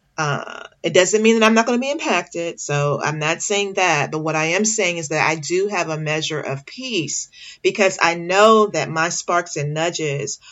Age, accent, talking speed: 40-59, American, 215 wpm